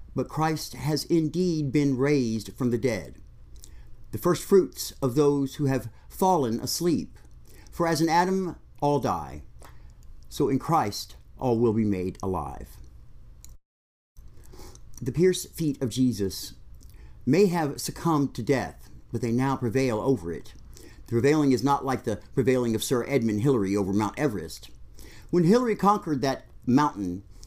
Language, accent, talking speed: English, American, 145 wpm